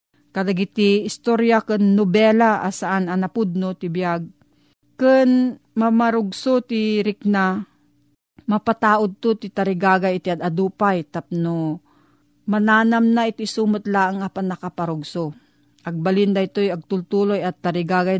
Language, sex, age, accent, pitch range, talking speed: Filipino, female, 40-59, native, 175-215 Hz, 100 wpm